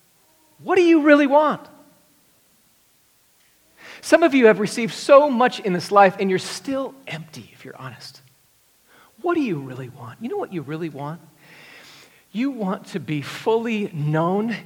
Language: English